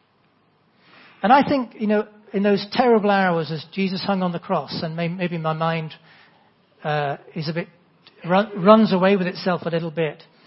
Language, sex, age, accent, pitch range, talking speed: English, male, 40-59, British, 170-200 Hz, 180 wpm